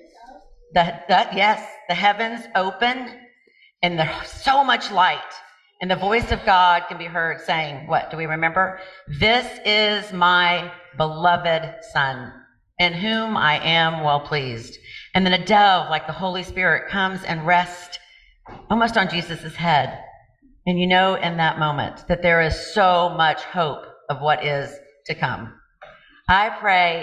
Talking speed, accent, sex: 150 wpm, American, female